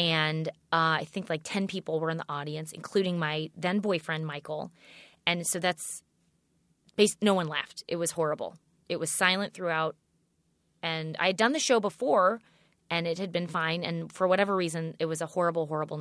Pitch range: 160-210 Hz